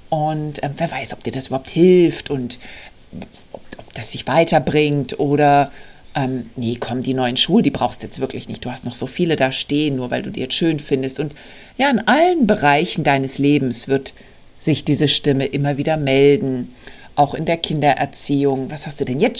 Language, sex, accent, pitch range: German, female, German, 130-155 Hz